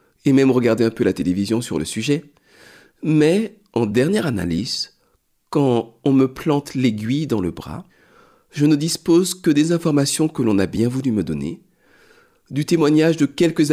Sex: male